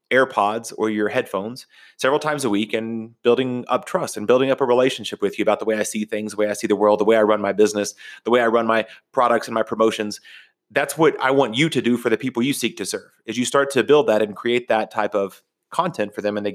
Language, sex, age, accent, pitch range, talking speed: English, male, 30-49, American, 110-125 Hz, 275 wpm